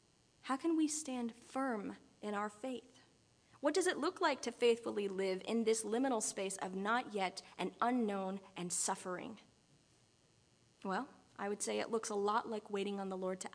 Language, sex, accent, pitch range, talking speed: English, female, American, 195-235 Hz, 180 wpm